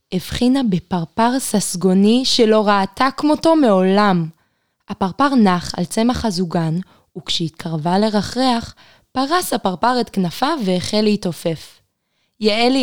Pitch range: 185-245 Hz